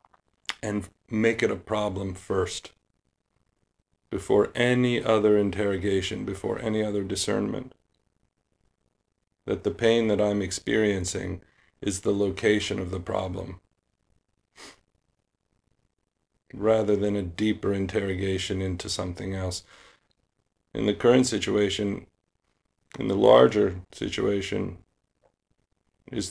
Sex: male